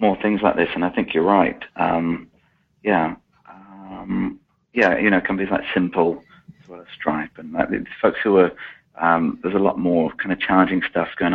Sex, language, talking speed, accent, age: male, English, 195 wpm, British, 40-59